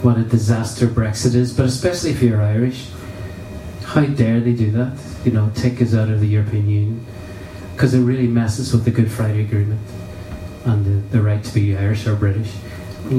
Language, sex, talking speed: English, male, 195 wpm